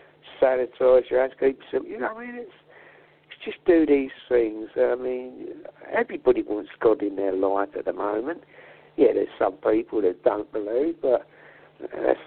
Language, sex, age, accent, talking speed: English, male, 60-79, British, 170 wpm